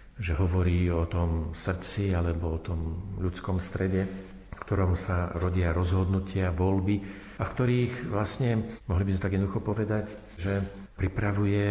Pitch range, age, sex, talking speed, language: 90-105 Hz, 50-69, male, 145 wpm, Slovak